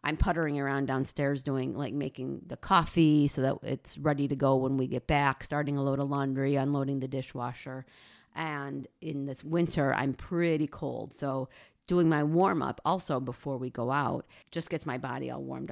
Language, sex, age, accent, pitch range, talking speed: English, female, 40-59, American, 135-160 Hz, 190 wpm